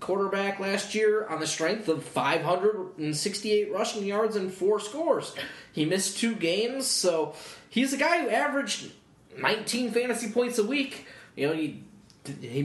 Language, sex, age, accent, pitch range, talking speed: English, male, 20-39, American, 165-210 Hz, 150 wpm